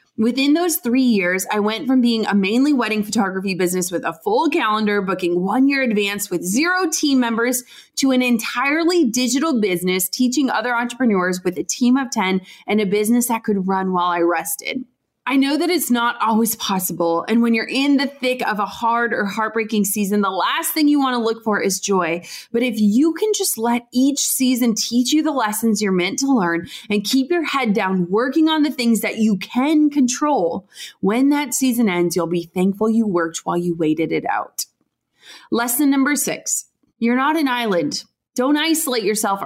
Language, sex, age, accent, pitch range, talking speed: English, female, 20-39, American, 200-270 Hz, 195 wpm